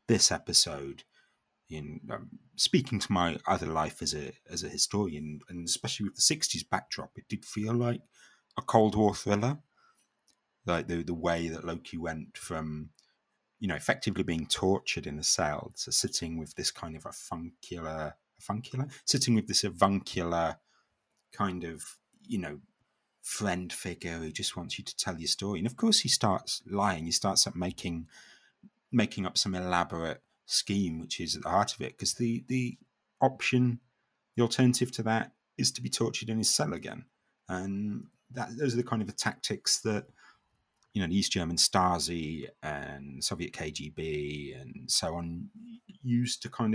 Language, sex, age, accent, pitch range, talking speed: English, male, 30-49, British, 85-115 Hz, 170 wpm